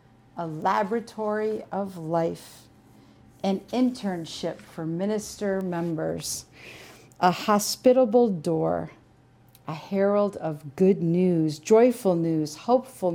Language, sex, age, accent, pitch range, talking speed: English, female, 50-69, American, 130-190 Hz, 90 wpm